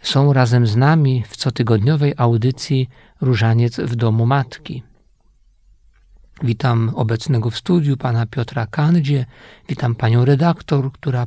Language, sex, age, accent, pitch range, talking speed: Polish, male, 50-69, native, 125-155 Hz, 115 wpm